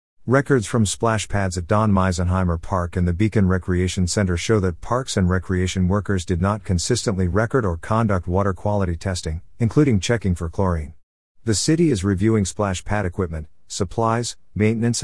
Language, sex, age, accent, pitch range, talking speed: English, male, 50-69, American, 90-110 Hz, 165 wpm